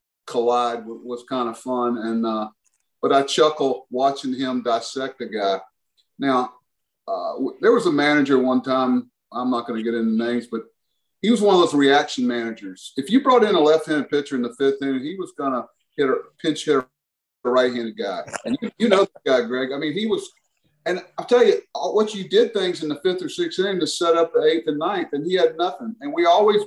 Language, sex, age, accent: English, male, 40-59, American